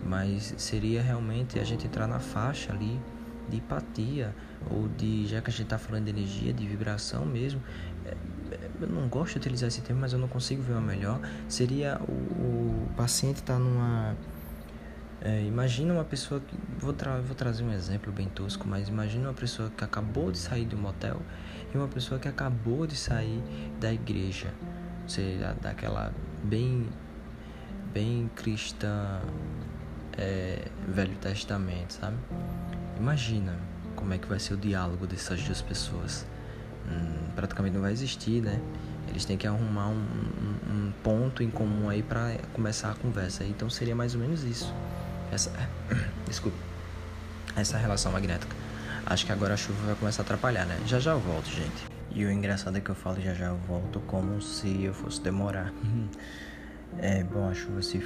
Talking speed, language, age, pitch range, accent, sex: 170 wpm, Portuguese, 20-39, 95-115 Hz, Brazilian, male